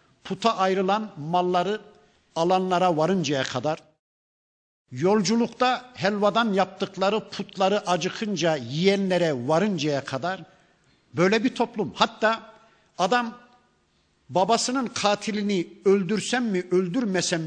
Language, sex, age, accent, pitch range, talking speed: Turkish, male, 50-69, native, 165-215 Hz, 80 wpm